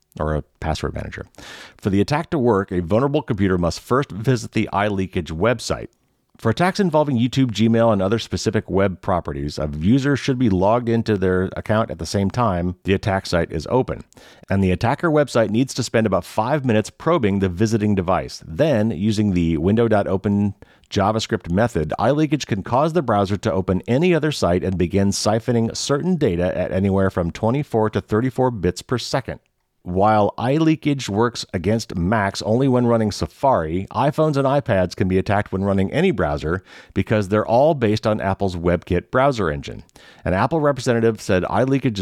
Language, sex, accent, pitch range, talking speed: English, male, American, 95-125 Hz, 175 wpm